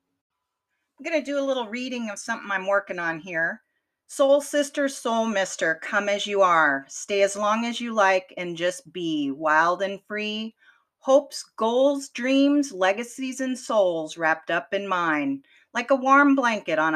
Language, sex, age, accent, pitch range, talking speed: English, female, 40-59, American, 195-270 Hz, 170 wpm